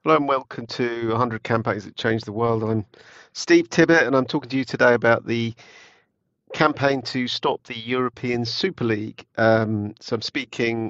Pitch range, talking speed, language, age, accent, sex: 105-125 Hz, 175 wpm, English, 40-59, British, male